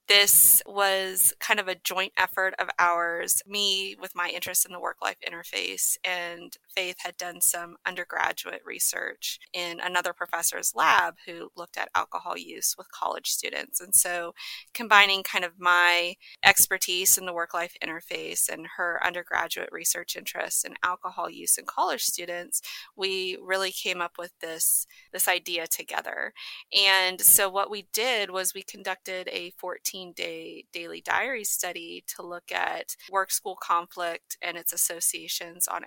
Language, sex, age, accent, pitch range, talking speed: English, female, 30-49, American, 175-195 Hz, 150 wpm